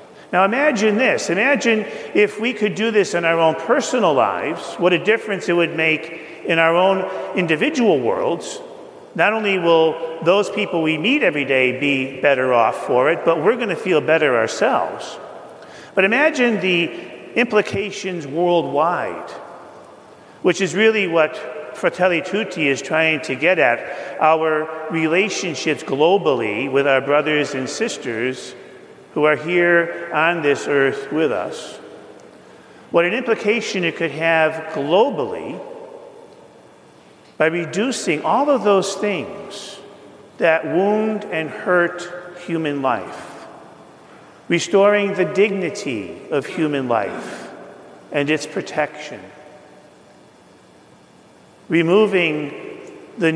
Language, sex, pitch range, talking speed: English, male, 155-205 Hz, 120 wpm